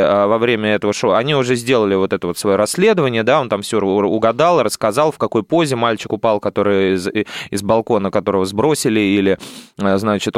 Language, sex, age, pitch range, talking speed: Russian, male, 20-39, 105-150 Hz, 180 wpm